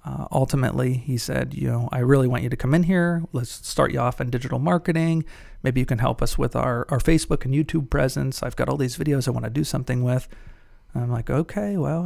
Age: 40-59